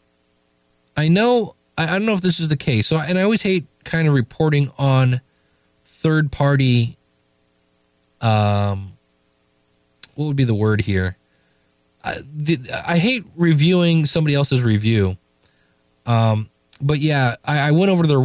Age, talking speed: 20-39, 145 wpm